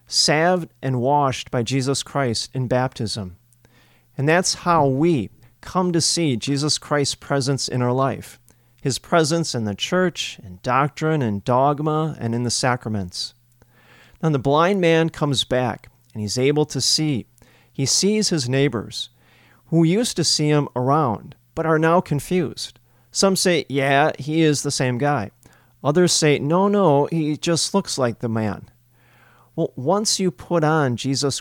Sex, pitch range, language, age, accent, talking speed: male, 120-155 Hz, English, 40-59, American, 160 wpm